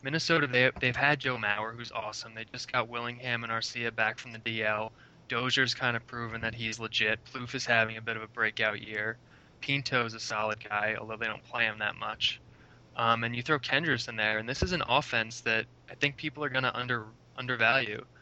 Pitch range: 110-125 Hz